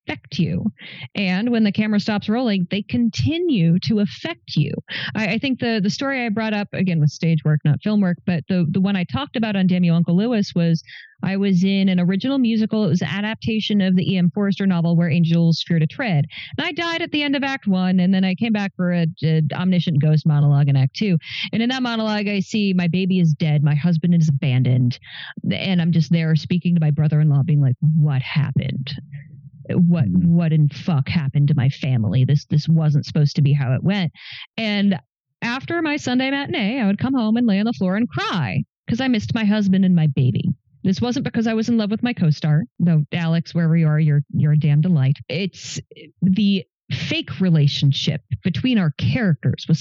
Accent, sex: American, female